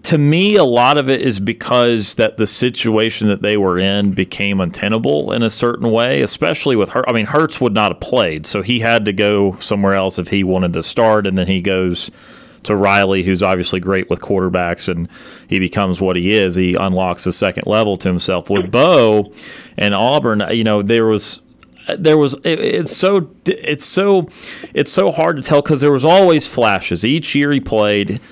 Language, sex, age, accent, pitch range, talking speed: English, male, 30-49, American, 95-120 Hz, 205 wpm